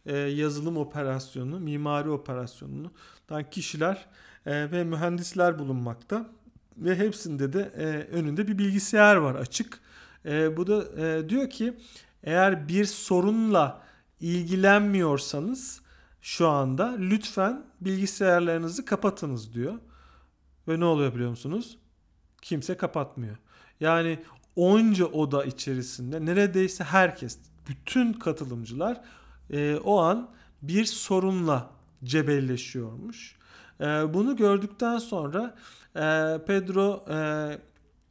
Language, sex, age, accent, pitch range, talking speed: Turkish, male, 40-59, native, 145-195 Hz, 85 wpm